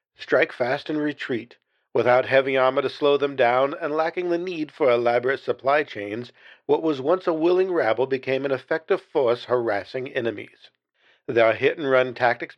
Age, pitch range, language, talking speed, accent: 50-69, 125-165 Hz, English, 160 wpm, American